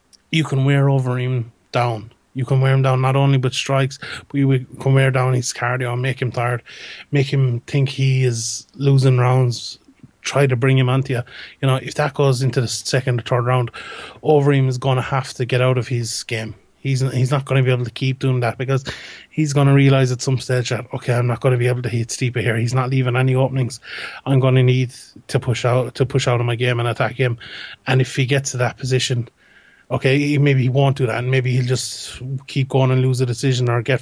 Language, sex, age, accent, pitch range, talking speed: English, male, 20-39, Irish, 125-135 Hz, 230 wpm